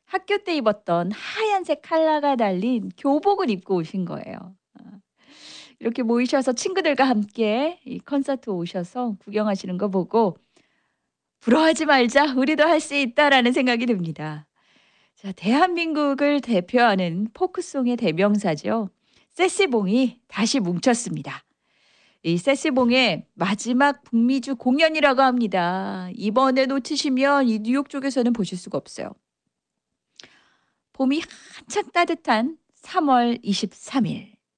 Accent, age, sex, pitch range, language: native, 40-59, female, 195-285 Hz, Korean